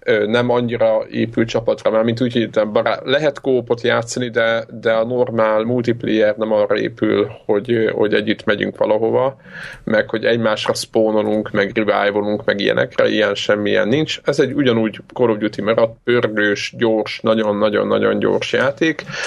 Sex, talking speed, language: male, 140 wpm, Hungarian